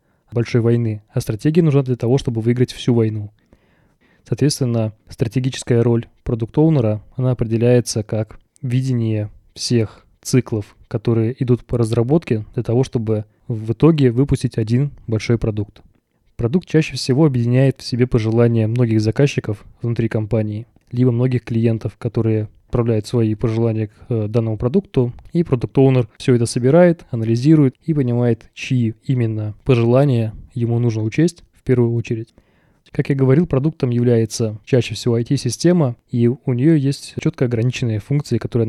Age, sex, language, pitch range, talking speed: 20-39, male, Russian, 110-130 Hz, 140 wpm